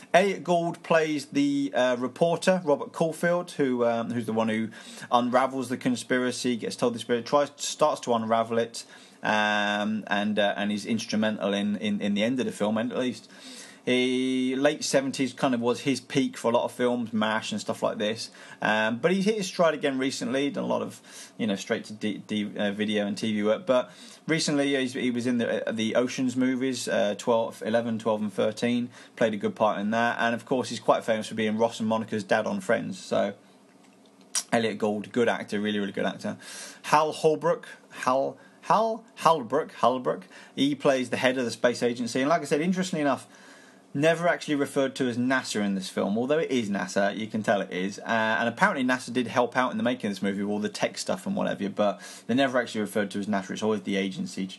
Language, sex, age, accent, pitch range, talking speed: English, male, 30-49, British, 105-140 Hz, 220 wpm